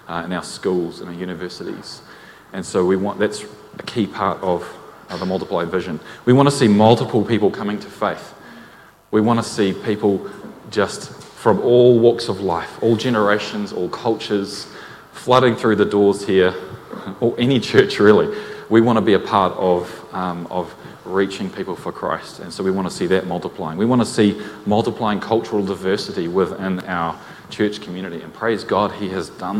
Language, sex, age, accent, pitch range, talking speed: English, male, 30-49, Australian, 95-110 Hz, 185 wpm